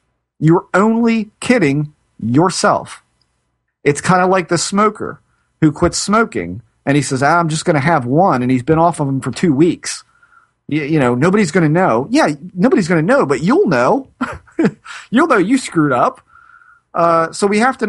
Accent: American